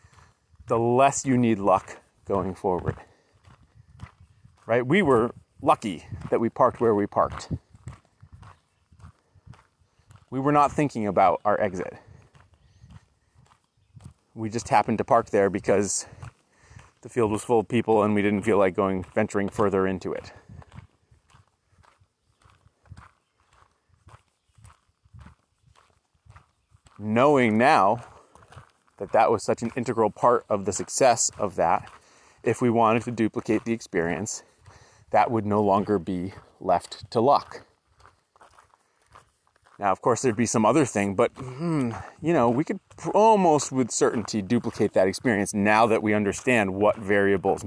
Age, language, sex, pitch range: 30-49, English, male, 100-120 Hz